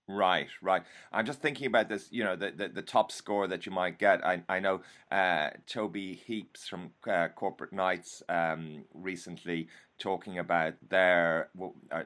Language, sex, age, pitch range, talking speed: English, male, 30-49, 85-100 Hz, 165 wpm